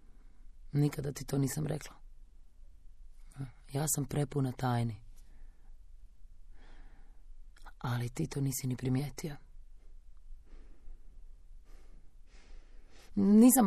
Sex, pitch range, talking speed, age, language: female, 130-175 Hz, 70 wpm, 30-49, Croatian